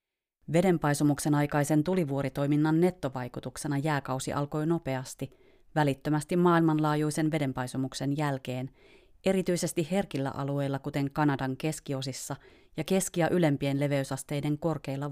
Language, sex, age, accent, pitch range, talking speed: Finnish, female, 30-49, native, 135-160 Hz, 85 wpm